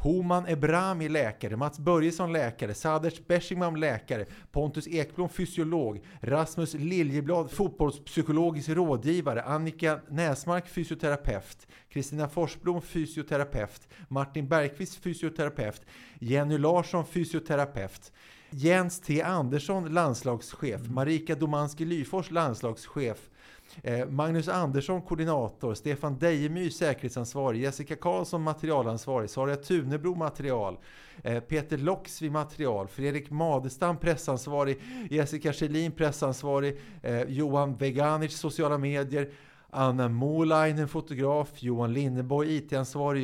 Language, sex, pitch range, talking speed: Swedish, male, 135-165 Hz, 90 wpm